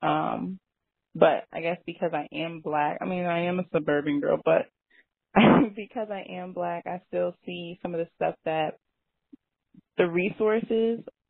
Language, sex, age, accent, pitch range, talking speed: English, female, 20-39, American, 155-185 Hz, 160 wpm